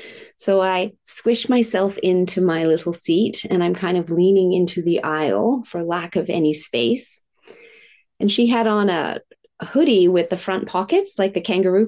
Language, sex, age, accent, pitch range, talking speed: English, female, 30-49, American, 175-235 Hz, 170 wpm